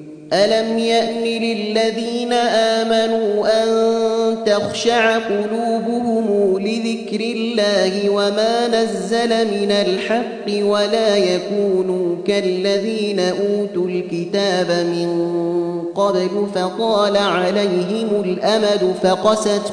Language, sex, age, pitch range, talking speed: Arabic, male, 30-49, 175-215 Hz, 75 wpm